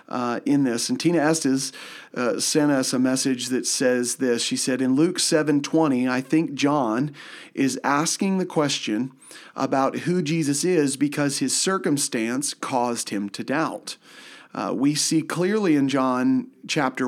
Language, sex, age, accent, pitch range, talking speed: English, male, 40-59, American, 130-165 Hz, 155 wpm